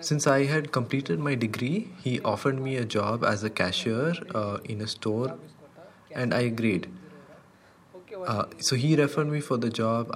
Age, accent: 20-39, Indian